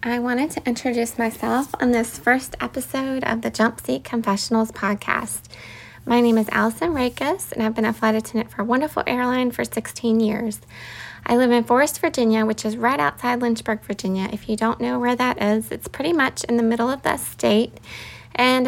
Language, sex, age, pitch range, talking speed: English, female, 20-39, 210-245 Hz, 190 wpm